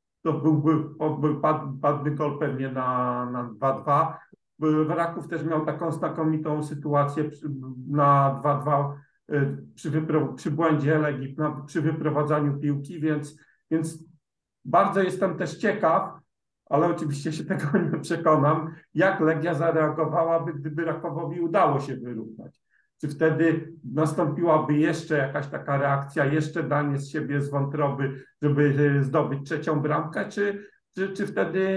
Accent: native